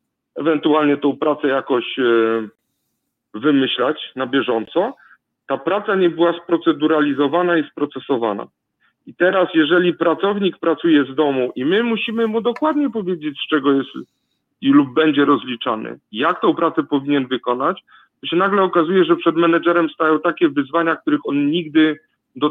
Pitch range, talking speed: 130-170 Hz, 140 wpm